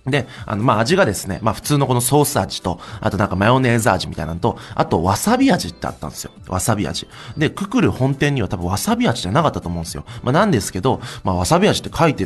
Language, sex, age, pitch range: Chinese, male, 20-39, 95-140 Hz